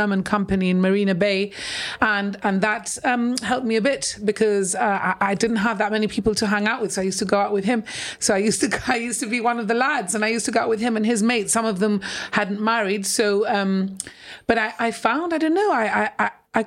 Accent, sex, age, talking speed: British, female, 40-59, 265 wpm